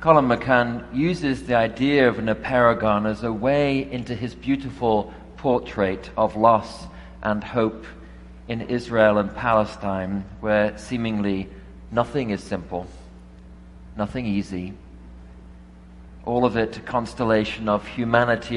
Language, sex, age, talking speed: English, male, 40-59, 120 wpm